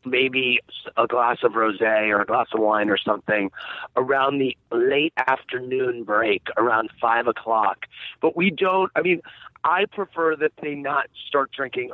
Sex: male